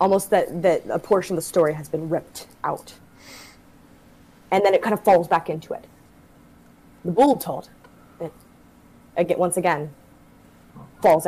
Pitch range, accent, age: 155-190 Hz, American, 20-39